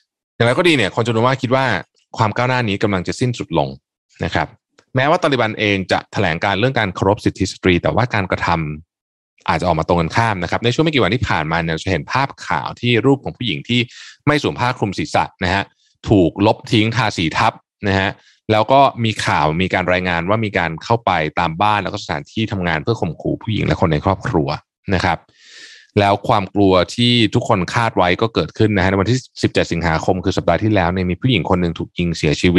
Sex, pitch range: male, 90-120 Hz